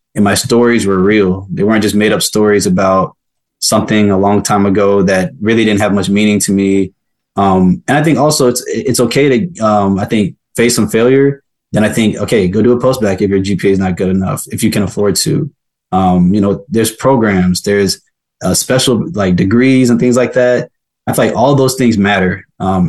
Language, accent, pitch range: English, American, 95-120 Hz